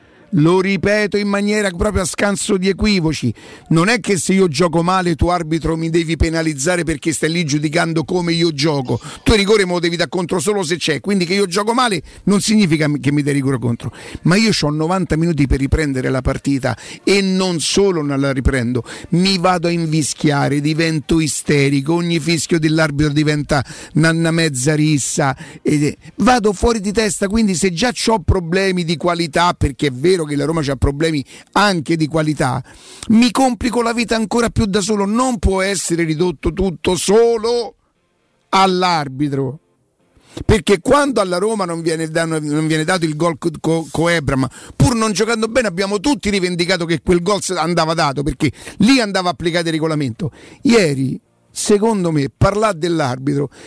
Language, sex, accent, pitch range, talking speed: Italian, male, native, 155-200 Hz, 170 wpm